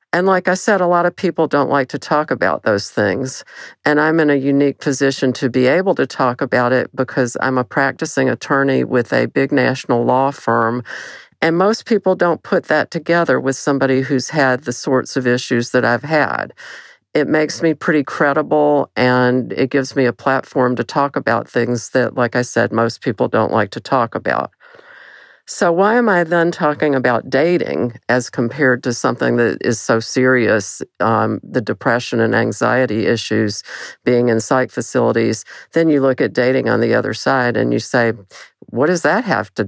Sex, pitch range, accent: female, 120-160 Hz, American